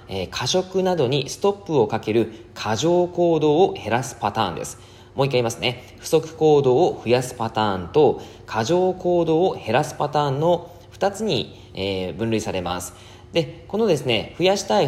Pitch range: 105-160 Hz